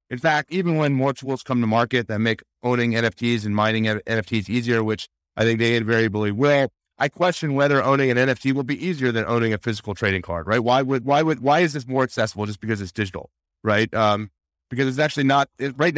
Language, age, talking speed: English, 40-59, 220 wpm